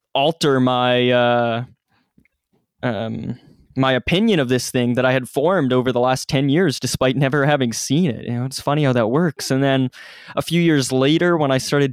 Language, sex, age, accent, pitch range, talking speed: English, male, 20-39, American, 120-140 Hz, 195 wpm